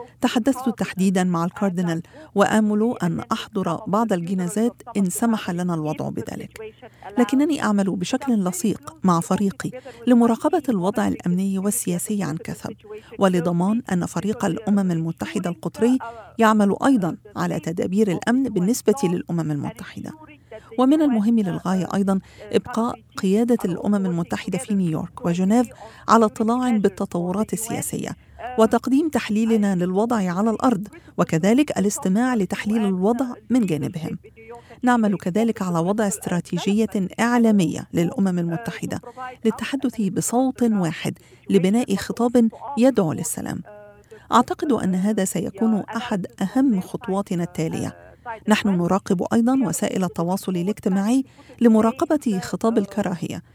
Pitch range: 180-230 Hz